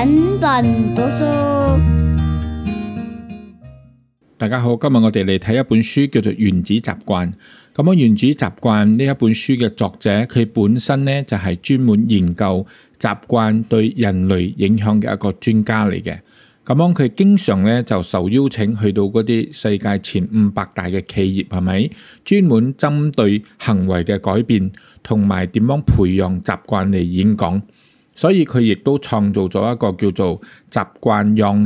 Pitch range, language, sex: 95-120 Hz, Chinese, male